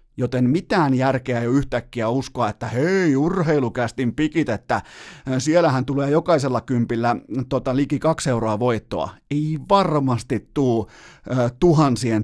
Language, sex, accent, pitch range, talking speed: Finnish, male, native, 115-150 Hz, 125 wpm